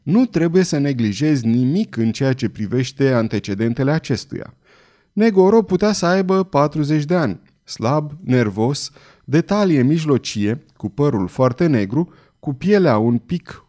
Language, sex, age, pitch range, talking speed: Romanian, male, 30-49, 120-180 Hz, 135 wpm